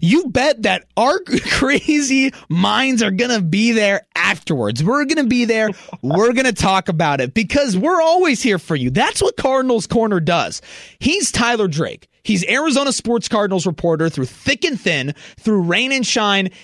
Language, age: English, 30-49